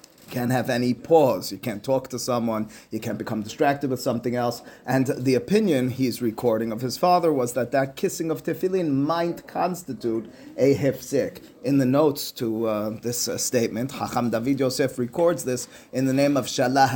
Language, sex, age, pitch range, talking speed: English, male, 30-49, 120-150 Hz, 185 wpm